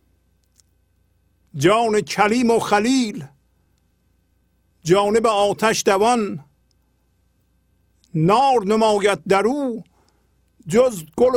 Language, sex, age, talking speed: Persian, male, 50-69, 65 wpm